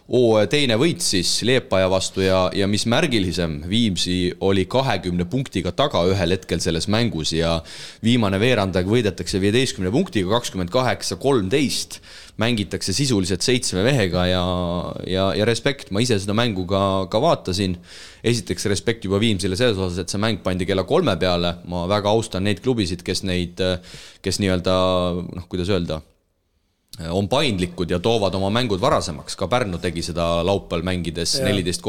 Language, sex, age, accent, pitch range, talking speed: English, male, 30-49, Finnish, 90-110 Hz, 150 wpm